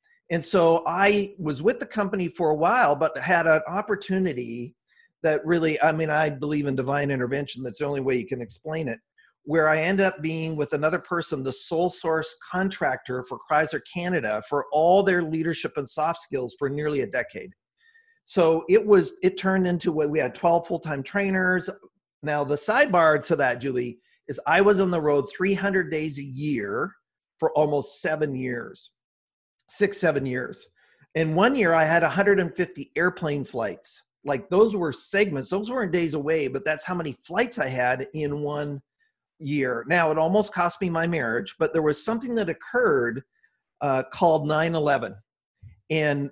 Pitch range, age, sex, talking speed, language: 145-185 Hz, 40-59, male, 175 wpm, English